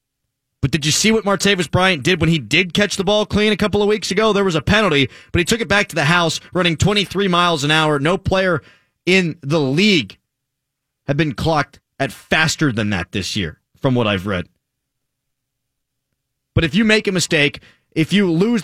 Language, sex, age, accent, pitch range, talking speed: English, male, 30-49, American, 130-175 Hz, 205 wpm